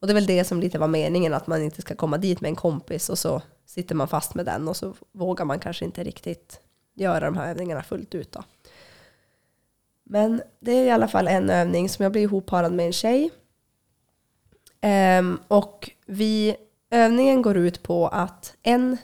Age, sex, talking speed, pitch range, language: 20-39, female, 195 wpm, 170-215 Hz, Swedish